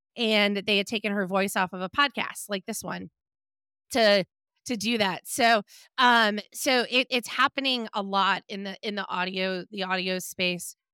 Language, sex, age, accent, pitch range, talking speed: English, female, 30-49, American, 190-245 Hz, 175 wpm